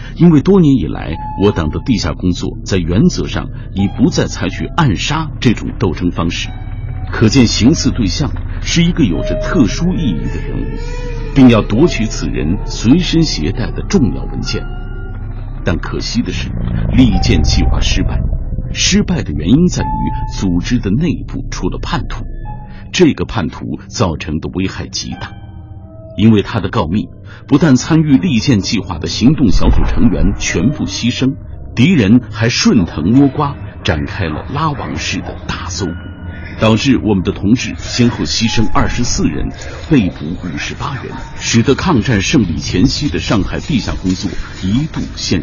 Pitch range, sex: 90-125 Hz, male